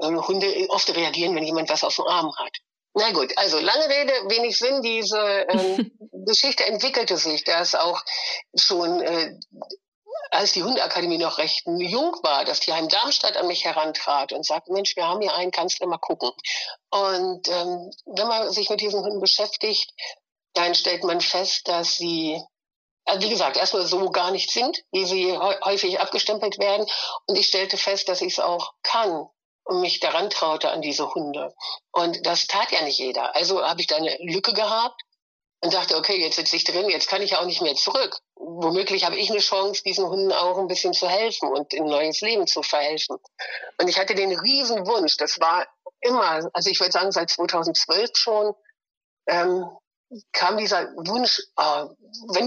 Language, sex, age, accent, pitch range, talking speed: German, female, 60-79, German, 175-220 Hz, 190 wpm